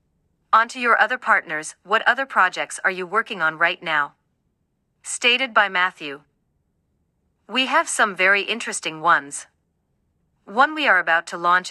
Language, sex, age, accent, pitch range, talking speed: English, female, 40-59, American, 170-225 Hz, 150 wpm